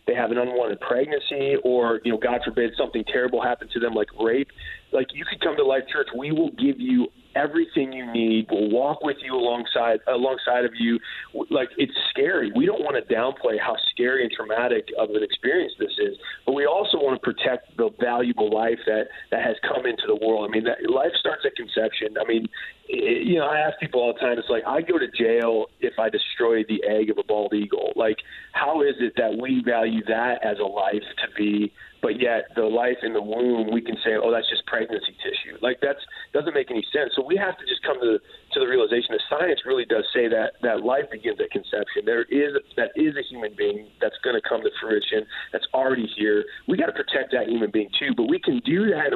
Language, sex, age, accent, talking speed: English, male, 30-49, American, 230 wpm